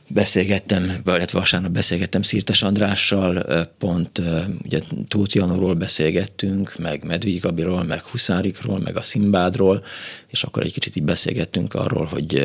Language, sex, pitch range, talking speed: Hungarian, male, 90-105 Hz, 120 wpm